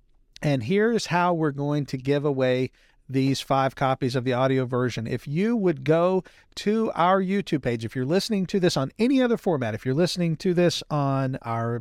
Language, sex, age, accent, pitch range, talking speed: English, male, 40-59, American, 135-200 Hz, 200 wpm